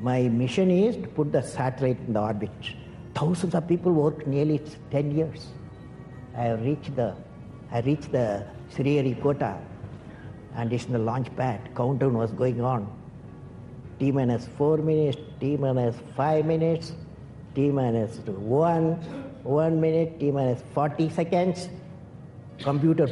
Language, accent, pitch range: English, Indian, 125-155 Hz